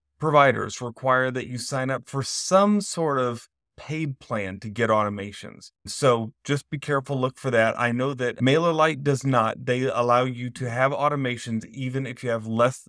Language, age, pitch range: English, 30-49, 110-135 Hz